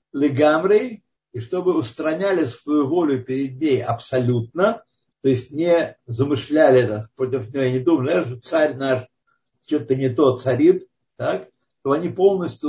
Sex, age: male, 50-69